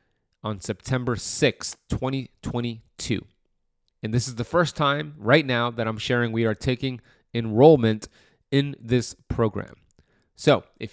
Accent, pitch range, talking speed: American, 110-130 Hz, 130 wpm